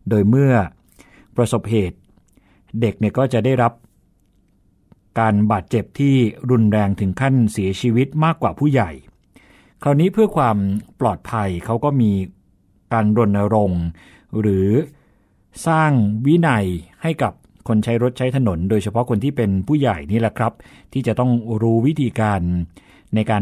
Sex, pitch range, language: male, 100-130 Hz, Thai